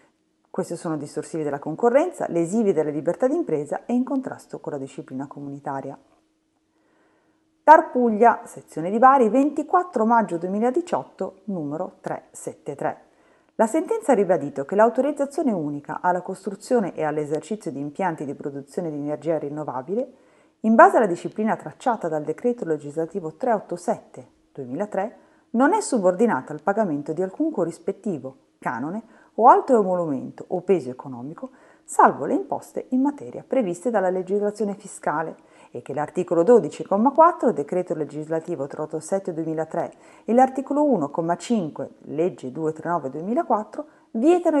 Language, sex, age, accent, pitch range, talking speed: Italian, female, 40-59, native, 155-250 Hz, 120 wpm